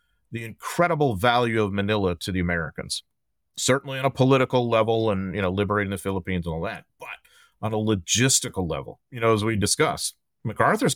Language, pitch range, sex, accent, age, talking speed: English, 90-110 Hz, male, American, 30-49, 180 wpm